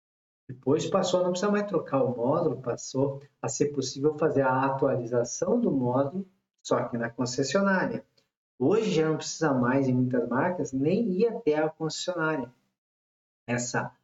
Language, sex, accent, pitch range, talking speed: Portuguese, male, Brazilian, 125-160 Hz, 155 wpm